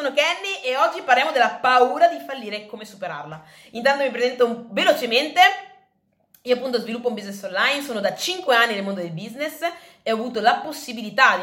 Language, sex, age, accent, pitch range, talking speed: Italian, female, 20-39, native, 200-285 Hz, 195 wpm